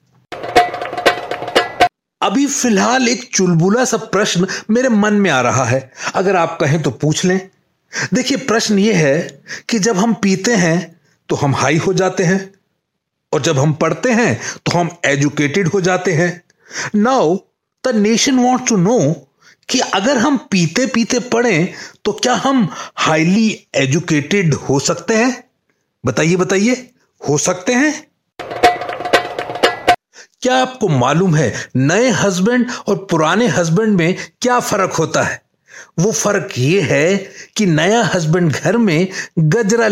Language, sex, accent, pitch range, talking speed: Hindi, male, native, 160-220 Hz, 140 wpm